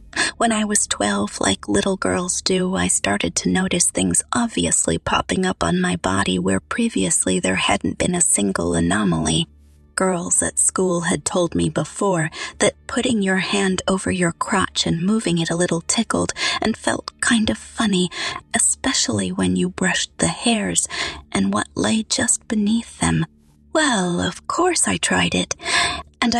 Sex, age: female, 30-49